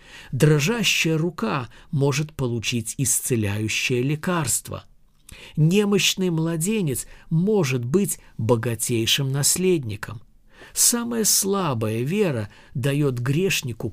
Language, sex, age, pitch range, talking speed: Russian, male, 50-69, 115-160 Hz, 75 wpm